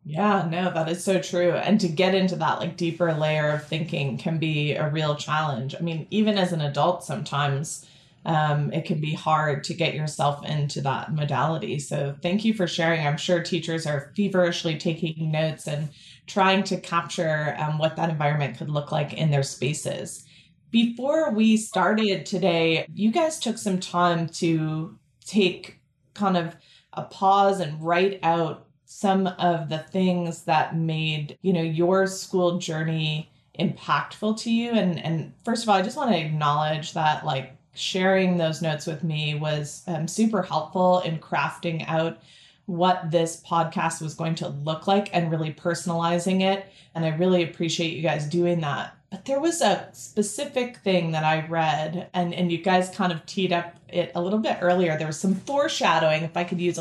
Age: 20-39